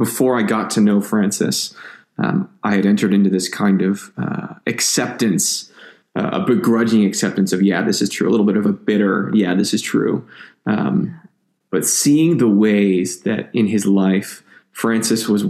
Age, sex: 20-39, male